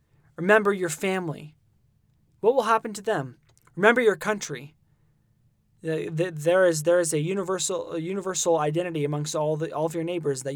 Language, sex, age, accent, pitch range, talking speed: English, male, 20-39, American, 135-170 Hz, 160 wpm